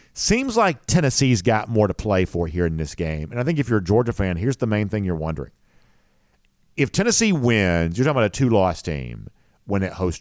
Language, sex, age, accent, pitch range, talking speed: English, male, 50-69, American, 80-120 Hz, 225 wpm